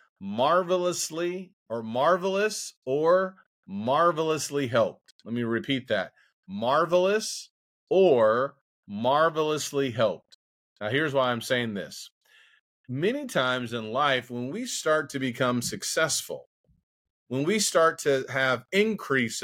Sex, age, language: male, 40-59, English